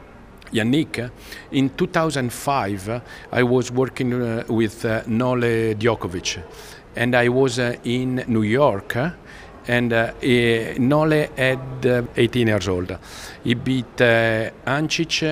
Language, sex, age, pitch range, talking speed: English, male, 50-69, 115-135 Hz, 120 wpm